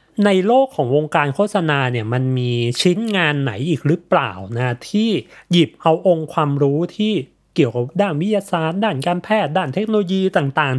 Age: 20-39